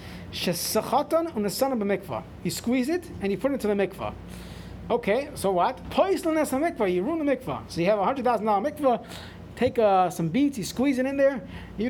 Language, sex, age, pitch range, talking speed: English, male, 30-49, 185-270 Hz, 200 wpm